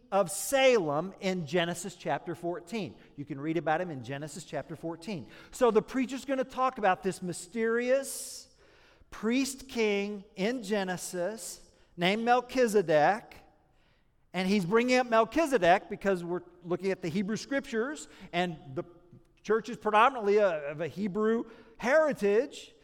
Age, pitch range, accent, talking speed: 50-69, 190-275 Hz, American, 135 wpm